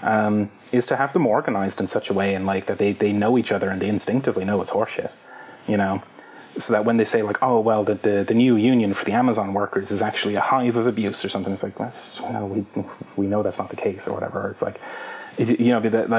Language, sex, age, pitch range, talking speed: English, male, 30-49, 100-120 Hz, 260 wpm